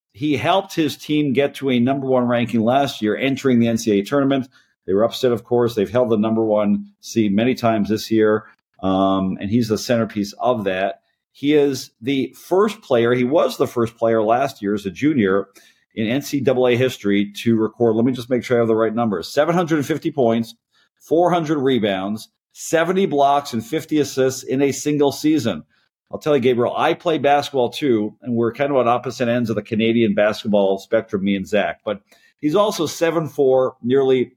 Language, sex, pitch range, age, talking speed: English, male, 110-140 Hz, 50-69, 190 wpm